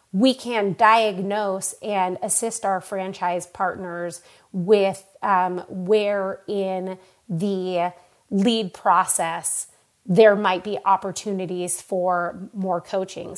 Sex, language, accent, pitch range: female, English, American, 180-200 Hz